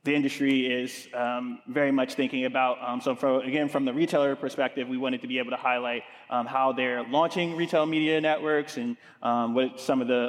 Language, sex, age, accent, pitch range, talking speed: English, male, 20-39, American, 120-140 Hz, 205 wpm